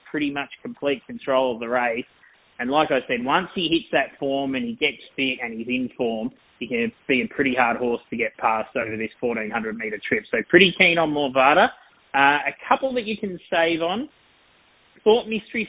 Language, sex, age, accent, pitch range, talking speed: English, male, 20-39, Australian, 130-165 Hz, 205 wpm